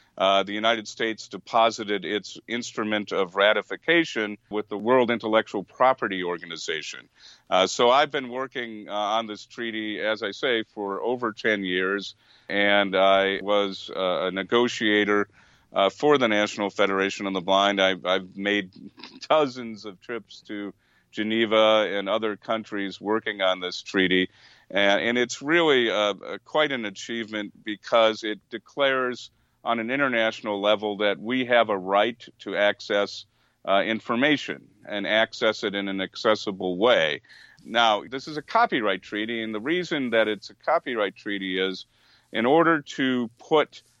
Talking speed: 150 wpm